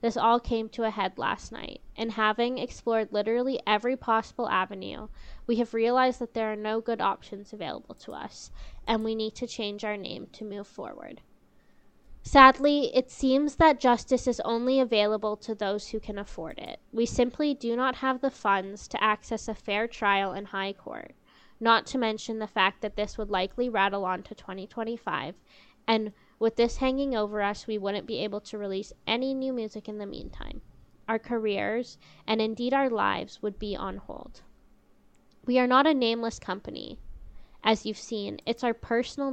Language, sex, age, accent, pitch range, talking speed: English, female, 10-29, American, 210-240 Hz, 180 wpm